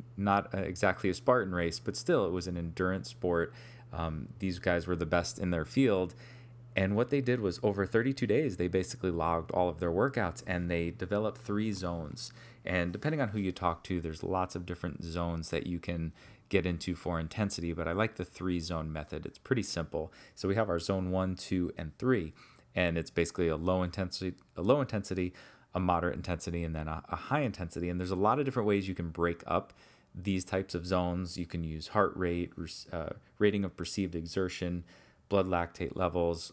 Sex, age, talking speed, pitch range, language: male, 30-49, 205 wpm, 85-100 Hz, English